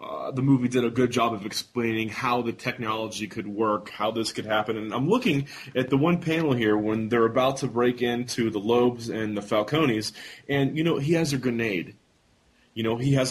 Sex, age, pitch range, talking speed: male, 30-49, 110-140 Hz, 215 wpm